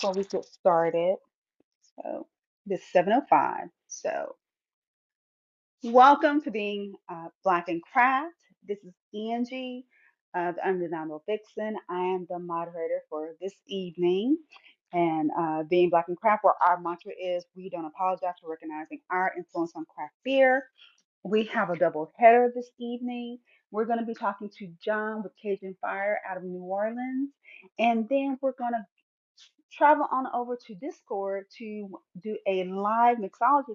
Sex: female